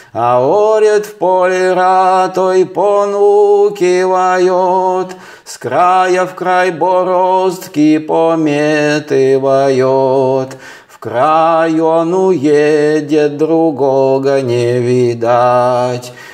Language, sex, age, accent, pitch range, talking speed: Russian, male, 30-49, native, 135-185 Hz, 70 wpm